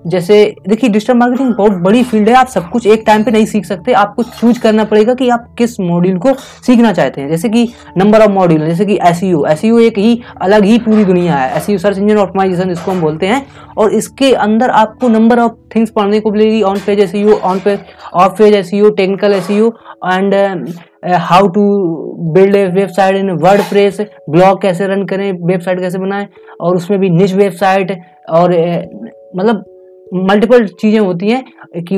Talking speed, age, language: 190 wpm, 20-39, Hindi